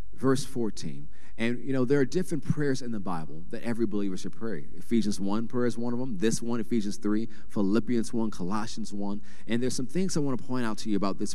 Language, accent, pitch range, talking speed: English, American, 95-125 Hz, 240 wpm